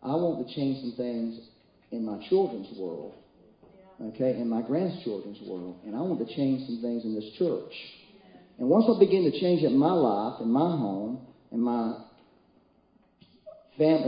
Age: 40-59